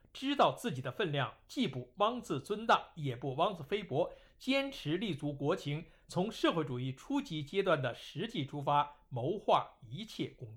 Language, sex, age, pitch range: Chinese, male, 60-79, 140-215 Hz